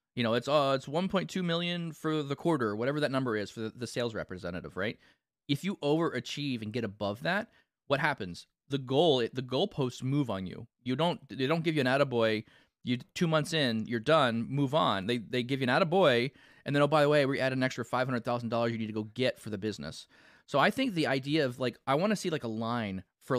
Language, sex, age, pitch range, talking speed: English, male, 20-39, 115-155 Hz, 235 wpm